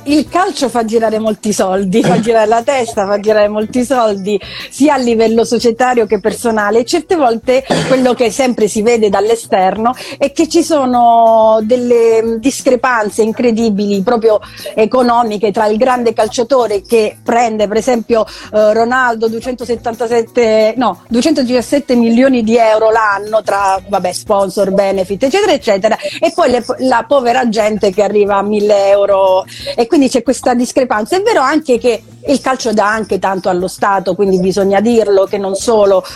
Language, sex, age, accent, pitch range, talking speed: Italian, female, 40-59, native, 215-255 Hz, 155 wpm